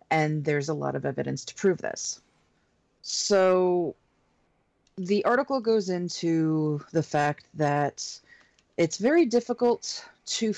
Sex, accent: female, American